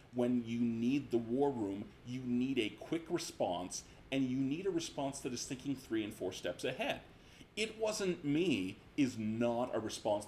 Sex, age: male, 40-59